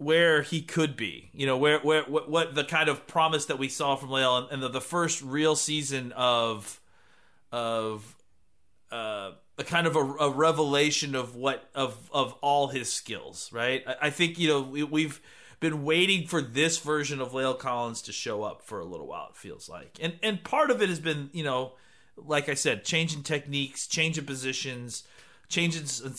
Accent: American